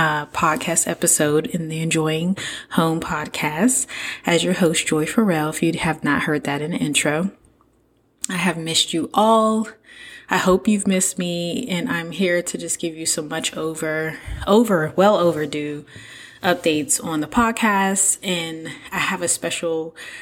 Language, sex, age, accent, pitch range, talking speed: English, female, 20-39, American, 160-190 Hz, 160 wpm